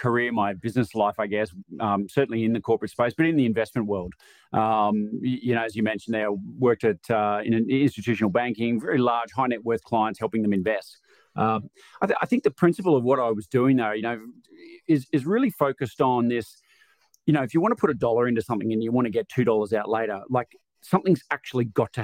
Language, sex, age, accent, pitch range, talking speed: English, male, 30-49, Australian, 110-135 Hz, 230 wpm